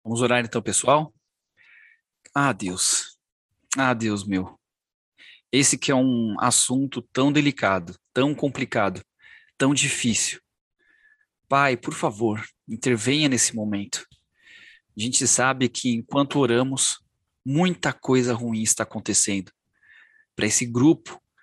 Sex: male